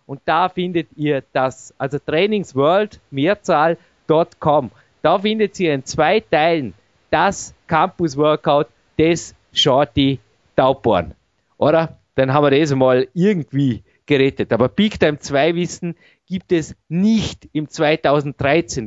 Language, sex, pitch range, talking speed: German, male, 135-170 Hz, 115 wpm